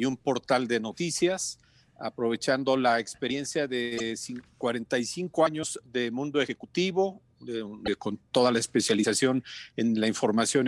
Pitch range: 125-155 Hz